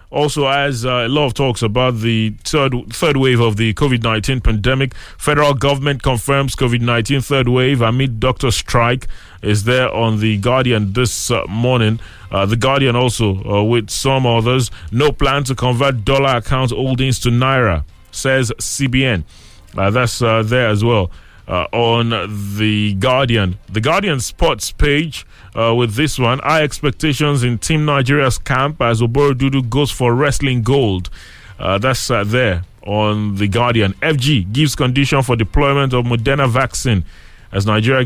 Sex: male